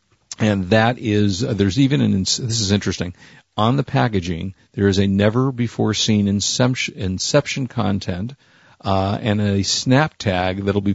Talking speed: 170 wpm